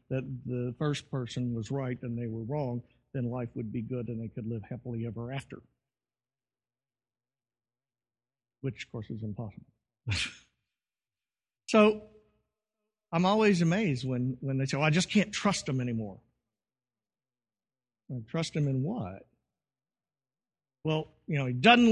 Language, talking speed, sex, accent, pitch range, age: English, 140 wpm, male, American, 125-200 Hz, 50-69